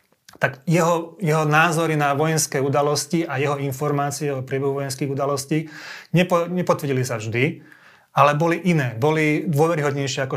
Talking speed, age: 140 wpm, 30-49